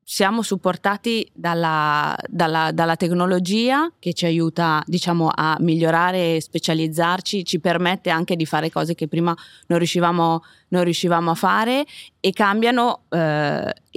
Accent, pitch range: native, 155-175 Hz